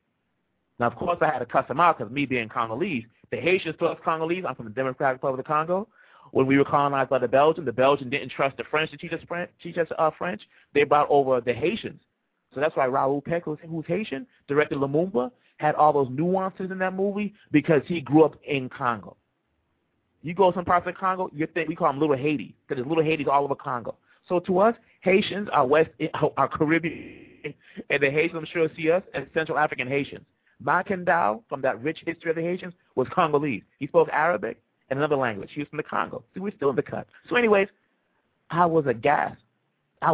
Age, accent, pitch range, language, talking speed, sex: 30-49, American, 140-175 Hz, English, 210 wpm, male